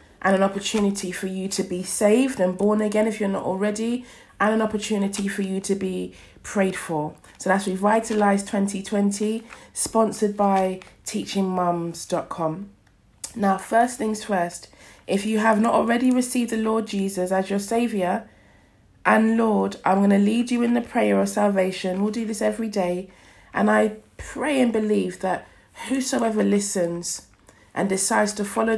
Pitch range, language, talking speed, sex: 185-225 Hz, English, 160 wpm, female